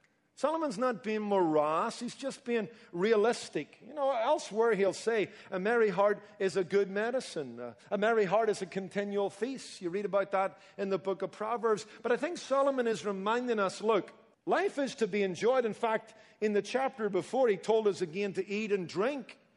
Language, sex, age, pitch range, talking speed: English, male, 50-69, 185-225 Hz, 195 wpm